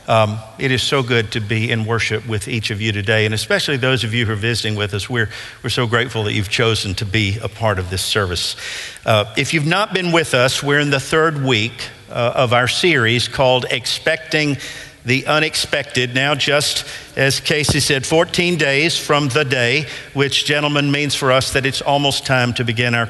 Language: English